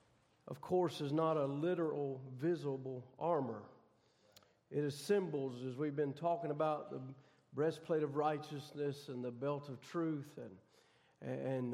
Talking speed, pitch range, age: 140 wpm, 150-190 Hz, 50-69